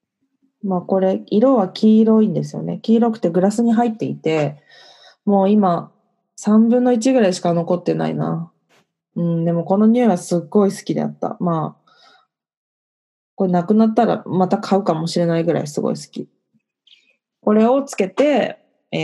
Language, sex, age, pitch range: Japanese, female, 20-39, 165-215 Hz